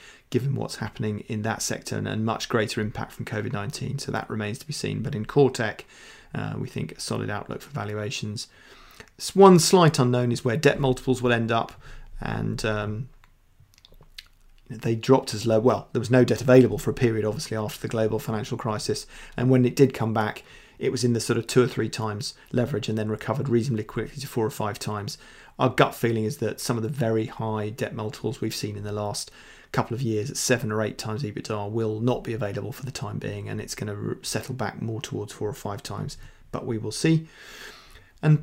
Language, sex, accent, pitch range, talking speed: English, male, British, 110-130 Hz, 215 wpm